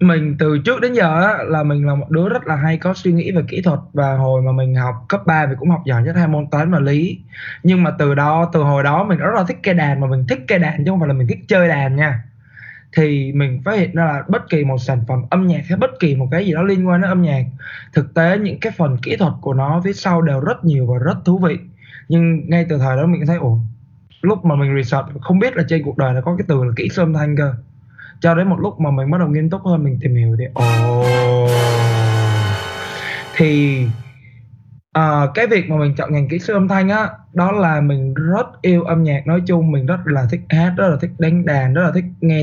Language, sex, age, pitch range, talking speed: Vietnamese, male, 20-39, 135-175 Hz, 265 wpm